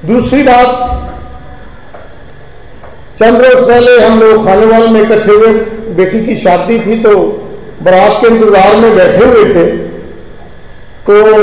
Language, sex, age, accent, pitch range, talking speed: Hindi, male, 50-69, native, 205-245 Hz, 130 wpm